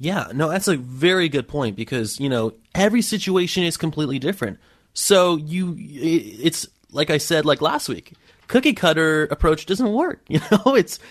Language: English